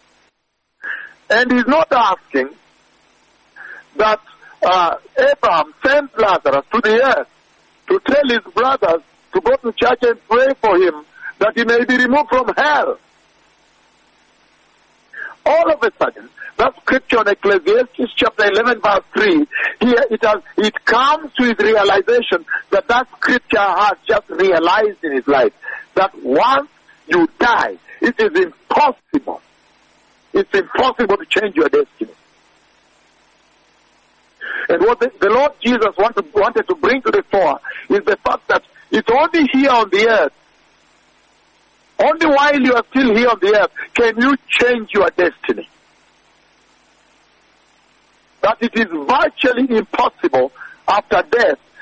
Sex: male